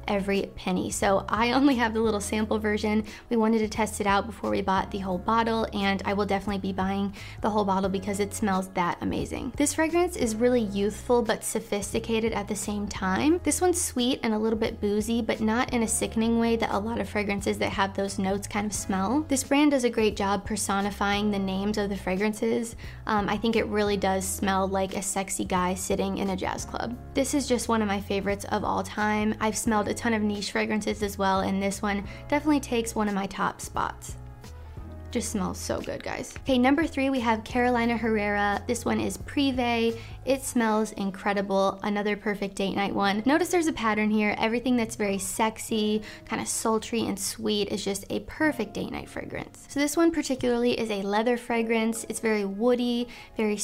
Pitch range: 200-235 Hz